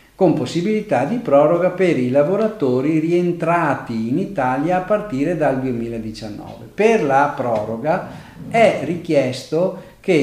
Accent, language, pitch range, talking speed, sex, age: native, Italian, 120-180 Hz, 115 wpm, male, 50-69